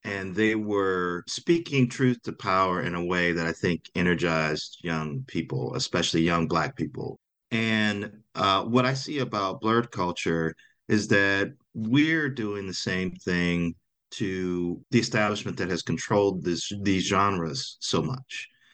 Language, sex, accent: English, male, American